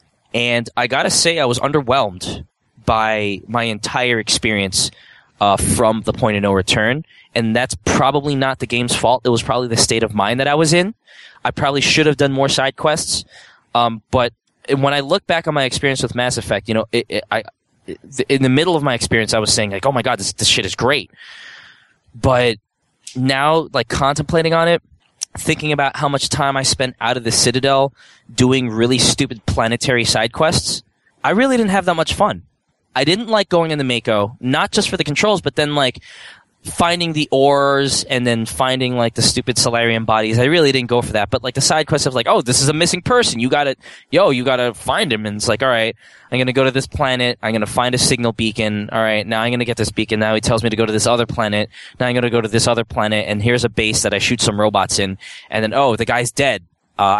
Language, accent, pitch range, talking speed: English, American, 110-140 Hz, 240 wpm